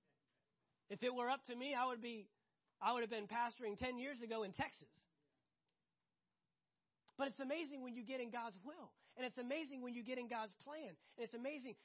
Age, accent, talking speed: 30-49, American, 205 wpm